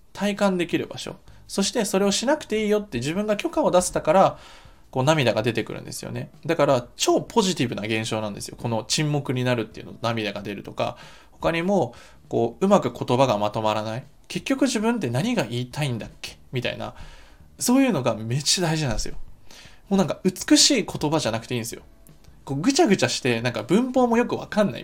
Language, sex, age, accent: Japanese, male, 20-39, native